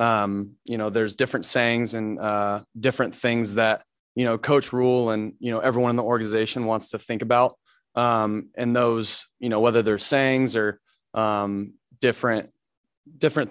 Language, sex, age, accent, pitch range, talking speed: English, male, 20-39, American, 110-120 Hz, 170 wpm